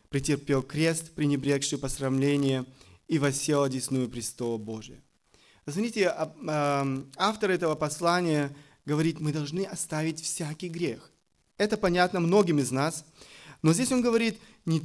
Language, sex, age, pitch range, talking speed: Russian, male, 30-49, 150-195 Hz, 120 wpm